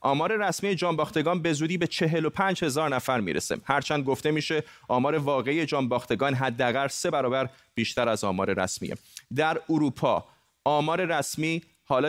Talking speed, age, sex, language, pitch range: 155 wpm, 30-49, male, Persian, 125-155 Hz